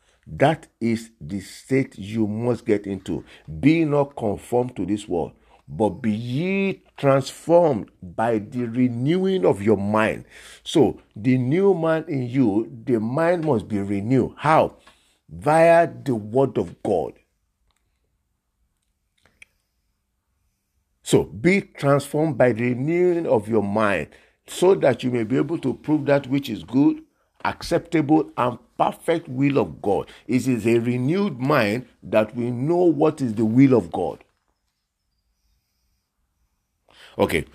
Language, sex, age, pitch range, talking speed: English, male, 50-69, 100-140 Hz, 135 wpm